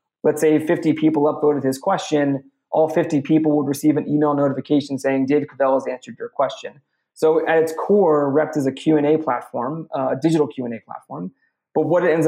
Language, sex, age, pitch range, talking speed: English, male, 20-39, 140-160 Hz, 210 wpm